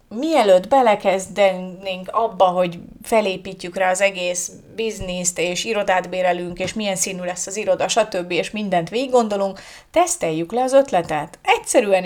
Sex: female